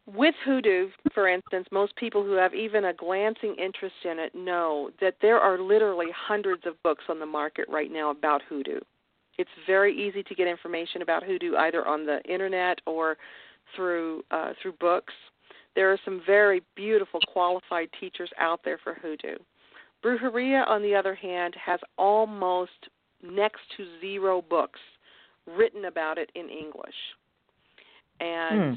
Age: 50-69